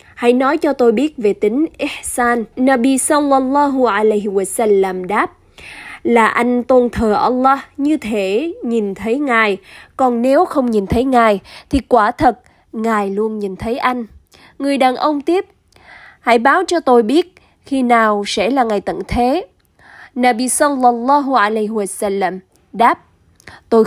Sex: female